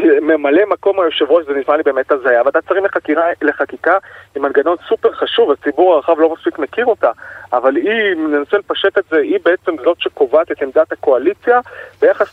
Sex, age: male, 30-49